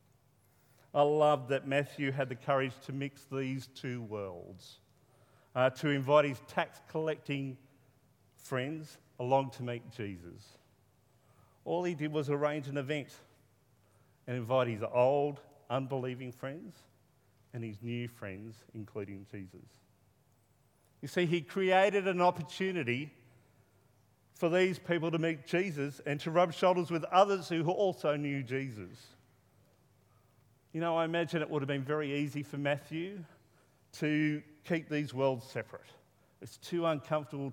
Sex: male